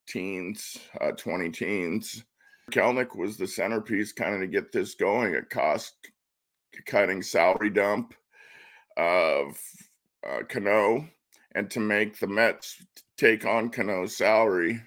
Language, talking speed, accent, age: English, 125 wpm, American, 50-69